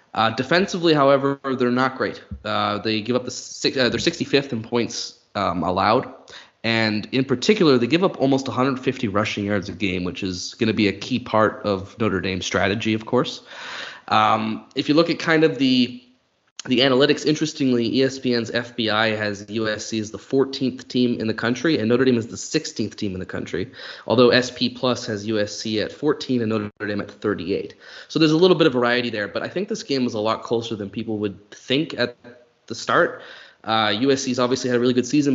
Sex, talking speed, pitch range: male, 205 wpm, 105-130 Hz